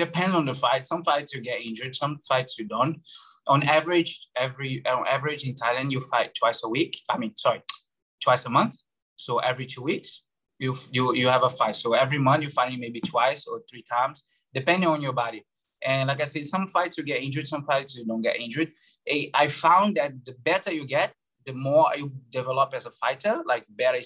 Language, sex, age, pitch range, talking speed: English, male, 20-39, 125-150 Hz, 215 wpm